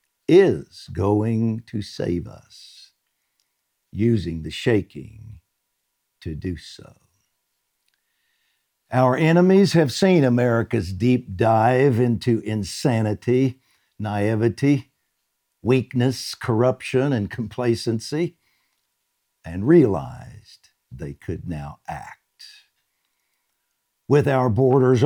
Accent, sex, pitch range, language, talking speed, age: American, male, 110-145 Hz, English, 80 wpm, 60-79